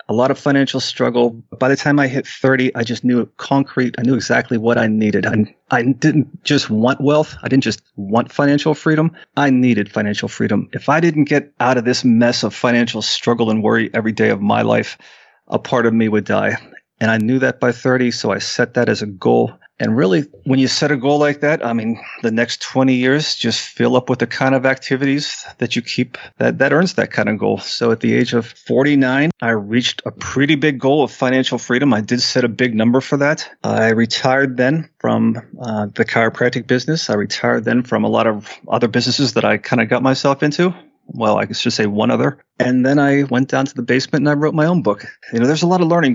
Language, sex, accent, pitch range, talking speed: English, male, American, 115-140 Hz, 240 wpm